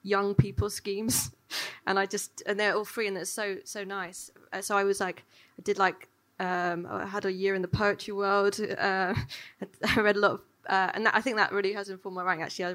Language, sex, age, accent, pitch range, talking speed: English, female, 20-39, British, 180-205 Hz, 230 wpm